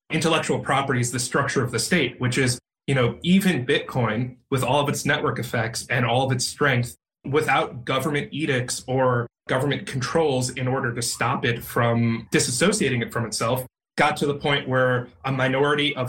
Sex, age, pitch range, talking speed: male, 30-49, 125-145 Hz, 185 wpm